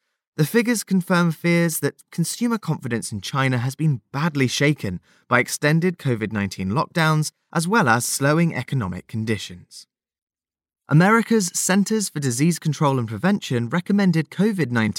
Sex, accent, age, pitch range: male, British, 20-39, 110-175 Hz